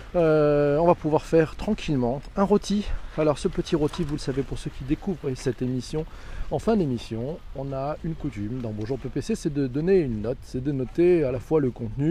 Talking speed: 220 wpm